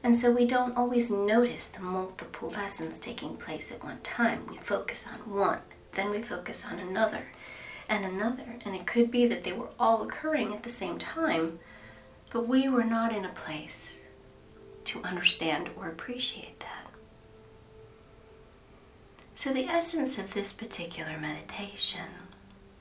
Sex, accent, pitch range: female, American, 165-240 Hz